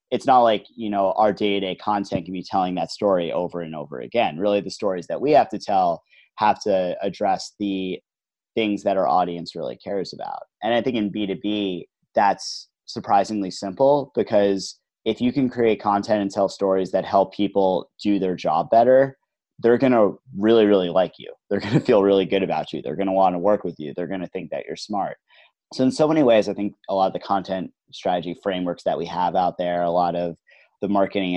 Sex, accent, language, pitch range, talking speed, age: male, American, English, 90-105 Hz, 215 wpm, 30-49